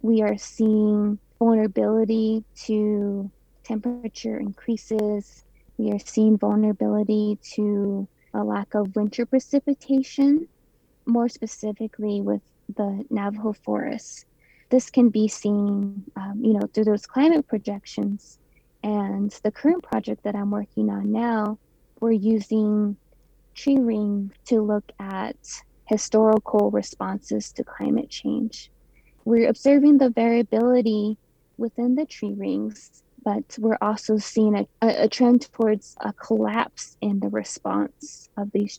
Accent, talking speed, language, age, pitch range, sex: American, 120 wpm, English, 20-39, 205-230 Hz, female